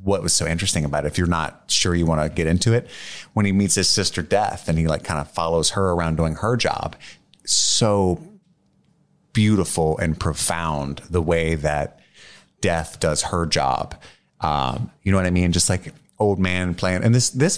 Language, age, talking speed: English, 30-49, 200 wpm